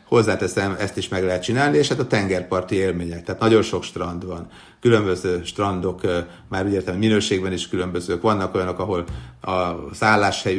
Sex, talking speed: male, 165 wpm